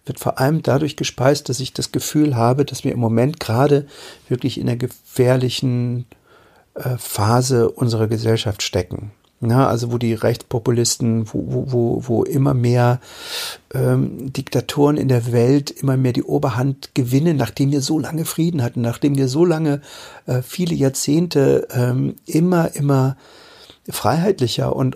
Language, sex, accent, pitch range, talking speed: German, male, German, 125-160 Hz, 145 wpm